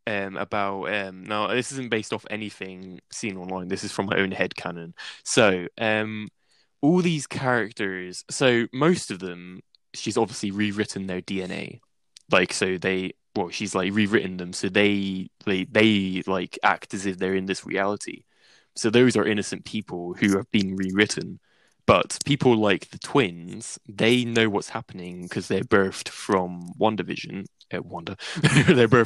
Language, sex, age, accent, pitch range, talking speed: English, male, 10-29, British, 95-110 Hz, 160 wpm